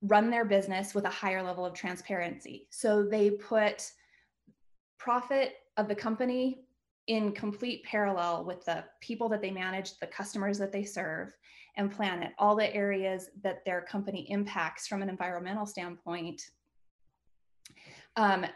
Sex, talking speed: female, 145 wpm